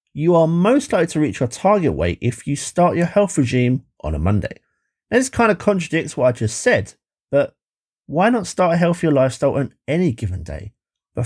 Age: 30-49